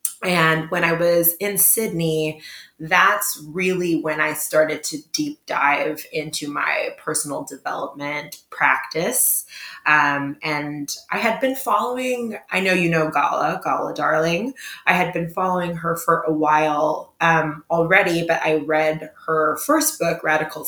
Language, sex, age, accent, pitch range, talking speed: English, female, 20-39, American, 150-180 Hz, 140 wpm